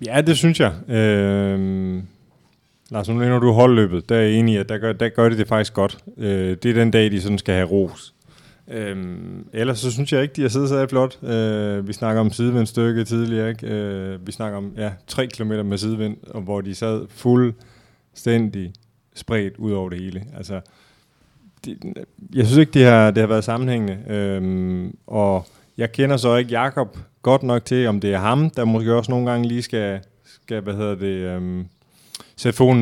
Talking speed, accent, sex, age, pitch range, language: 195 wpm, native, male, 30-49, 100-120 Hz, Danish